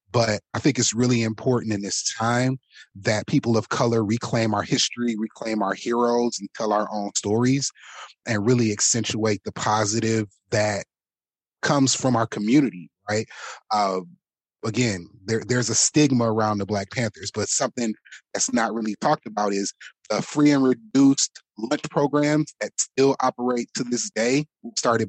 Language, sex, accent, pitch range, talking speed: English, male, American, 105-125 Hz, 160 wpm